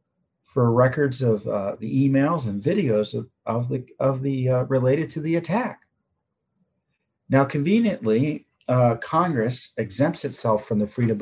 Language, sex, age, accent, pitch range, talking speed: English, male, 50-69, American, 110-140 Hz, 145 wpm